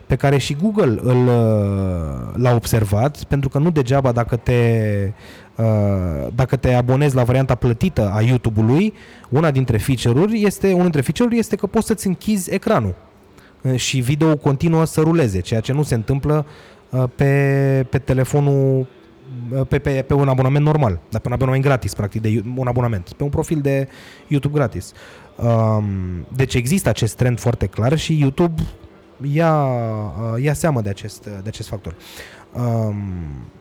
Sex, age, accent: male, 20-39, native